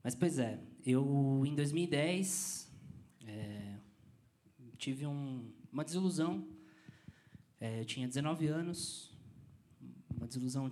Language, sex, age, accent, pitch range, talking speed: Portuguese, male, 20-39, Brazilian, 120-150 Hz, 100 wpm